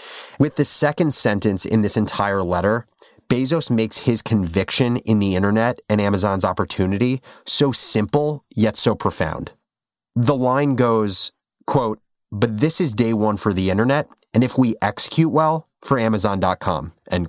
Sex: male